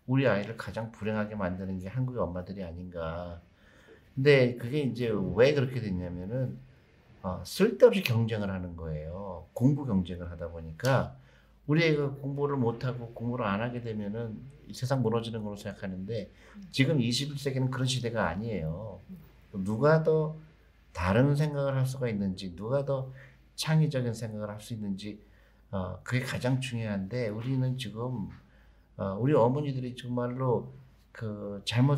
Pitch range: 100-135 Hz